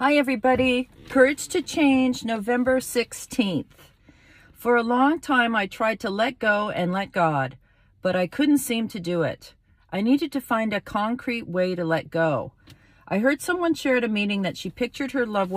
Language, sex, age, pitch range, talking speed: English, female, 40-59, 160-210 Hz, 180 wpm